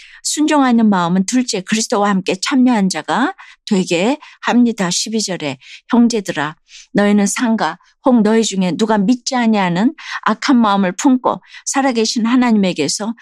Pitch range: 185-255 Hz